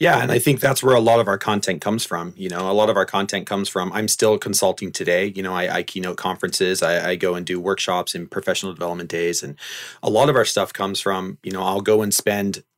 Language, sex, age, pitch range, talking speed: English, male, 30-49, 105-130 Hz, 265 wpm